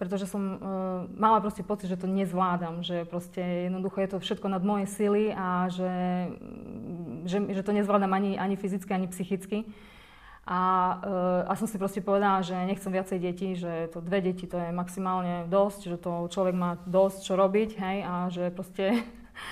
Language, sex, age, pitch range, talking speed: Slovak, female, 20-39, 180-205 Hz, 180 wpm